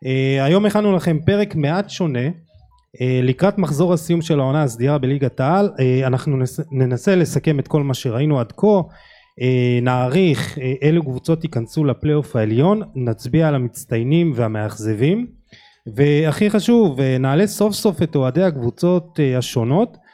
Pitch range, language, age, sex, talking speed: 130-170 Hz, Hebrew, 20-39, male, 150 wpm